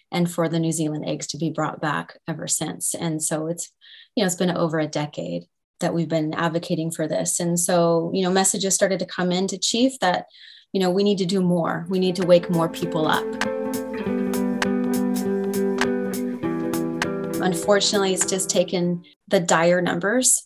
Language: English